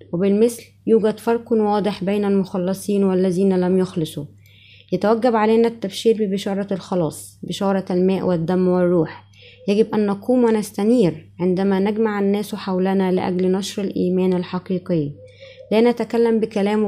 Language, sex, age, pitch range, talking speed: Arabic, female, 20-39, 185-215 Hz, 115 wpm